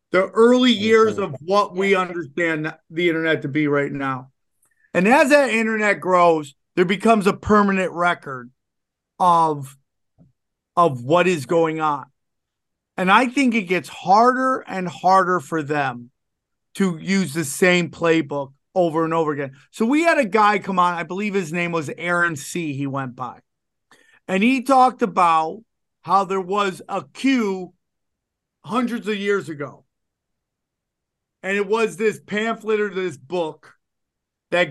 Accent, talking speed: American, 150 wpm